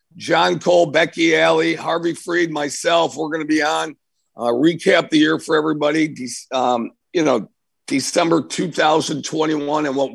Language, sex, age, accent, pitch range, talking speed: English, male, 50-69, American, 135-175 Hz, 150 wpm